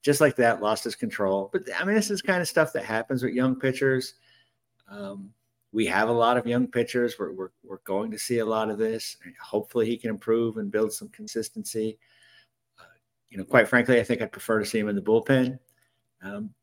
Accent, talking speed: American, 225 wpm